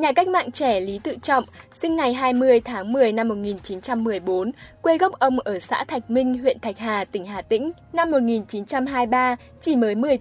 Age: 10-29